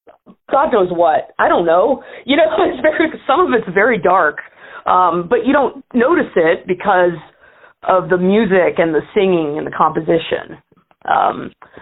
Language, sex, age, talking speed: English, female, 40-59, 160 wpm